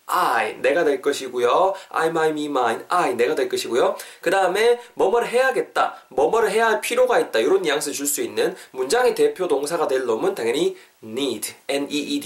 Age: 20-39